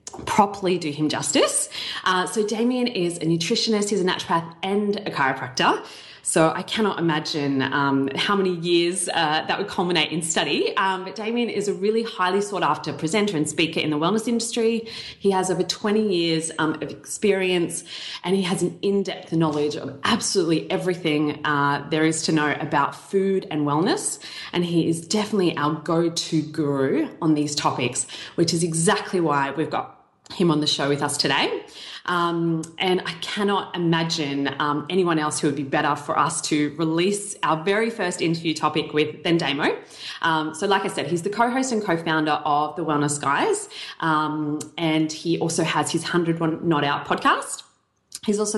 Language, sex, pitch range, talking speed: English, female, 155-200 Hz, 180 wpm